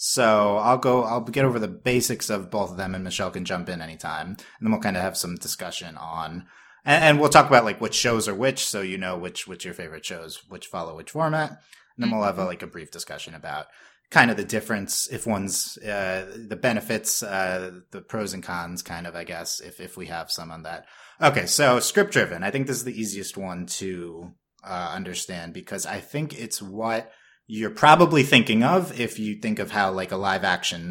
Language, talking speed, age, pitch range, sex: English, 225 wpm, 30-49, 95-125 Hz, male